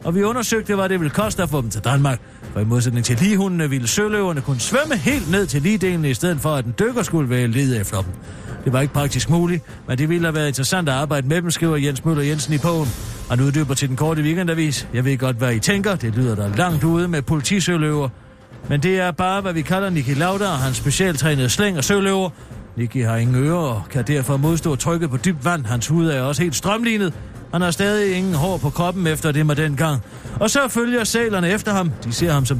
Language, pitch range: Danish, 130-195 Hz